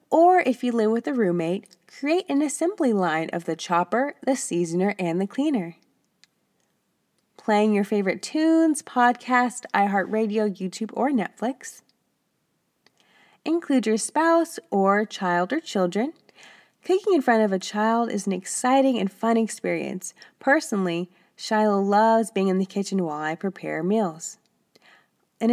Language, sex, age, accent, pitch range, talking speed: English, female, 20-39, American, 185-270 Hz, 140 wpm